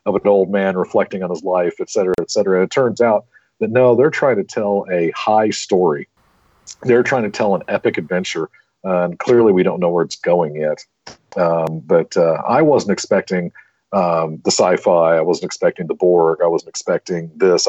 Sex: male